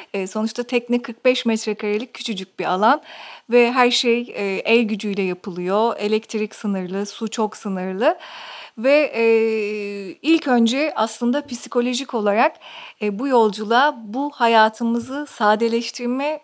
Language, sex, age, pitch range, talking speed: Turkish, female, 40-59, 210-265 Hz, 105 wpm